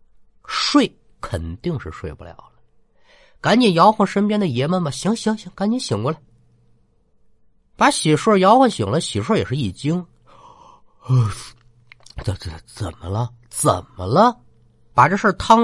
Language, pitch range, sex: Chinese, 105-160 Hz, male